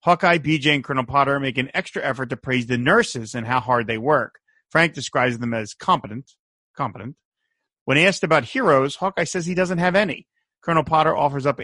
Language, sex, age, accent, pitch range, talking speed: English, male, 30-49, American, 125-170 Hz, 195 wpm